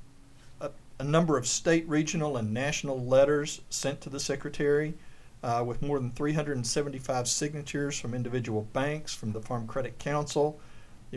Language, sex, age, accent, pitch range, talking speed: English, male, 50-69, American, 115-140 Hz, 145 wpm